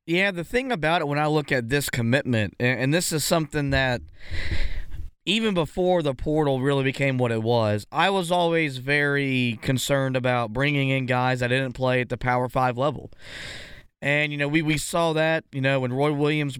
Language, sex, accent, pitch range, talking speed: English, male, American, 135-165 Hz, 195 wpm